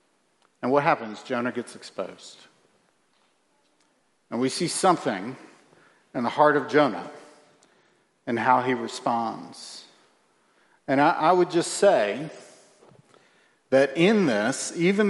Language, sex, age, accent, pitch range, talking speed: English, male, 50-69, American, 145-180 Hz, 115 wpm